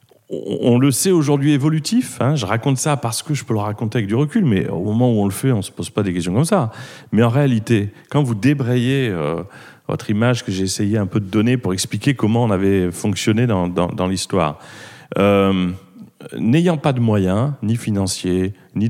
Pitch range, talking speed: 95-145 Hz, 215 wpm